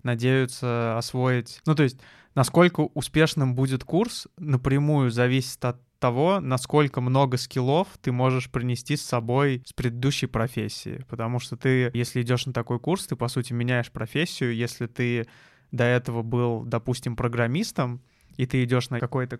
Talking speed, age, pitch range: 150 wpm, 20-39, 120-135 Hz